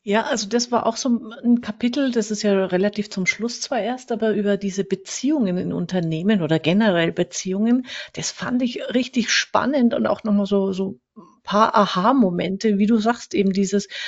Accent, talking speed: German, 185 wpm